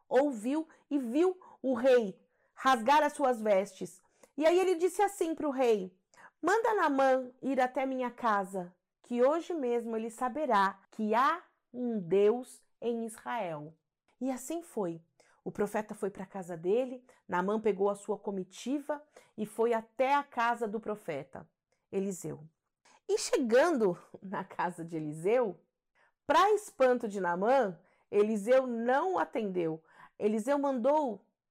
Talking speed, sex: 140 wpm, female